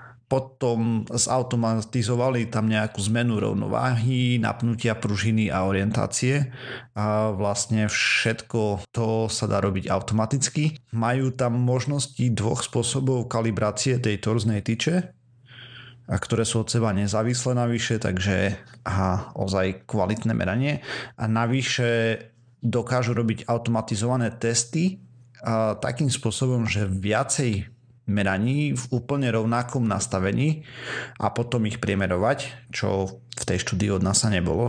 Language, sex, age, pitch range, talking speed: Slovak, male, 40-59, 105-125 Hz, 115 wpm